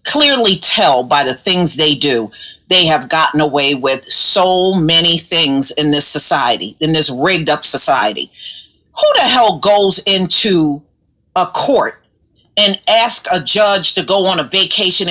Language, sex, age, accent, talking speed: English, female, 40-59, American, 155 wpm